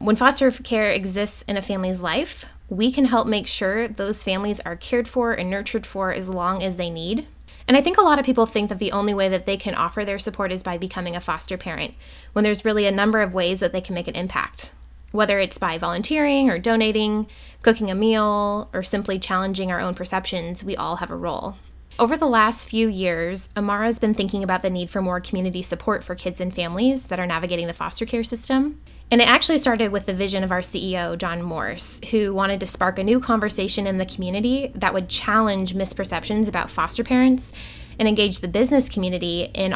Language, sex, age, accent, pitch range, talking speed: English, female, 20-39, American, 185-225 Hz, 220 wpm